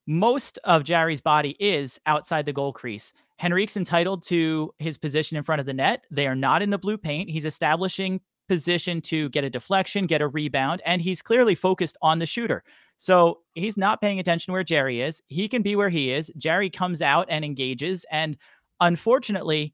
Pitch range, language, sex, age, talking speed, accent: 145-180 Hz, English, male, 30-49, 195 wpm, American